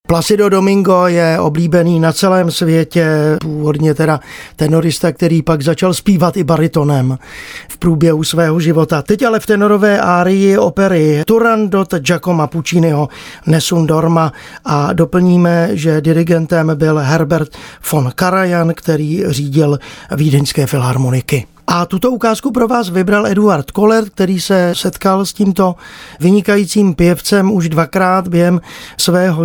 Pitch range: 160-195 Hz